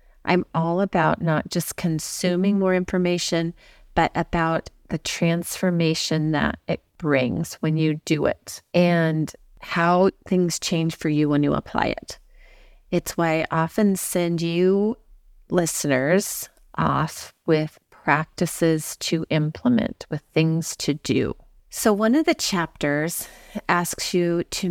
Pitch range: 155-185 Hz